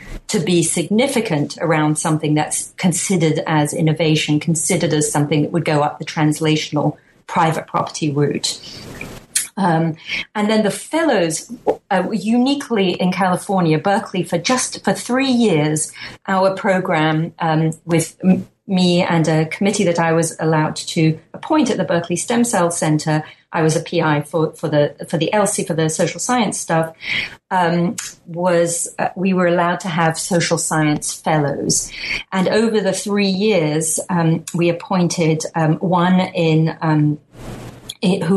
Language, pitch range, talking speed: English, 155-185 Hz, 150 wpm